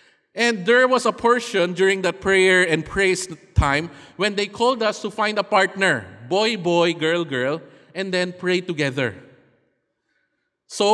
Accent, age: Filipino, 20-39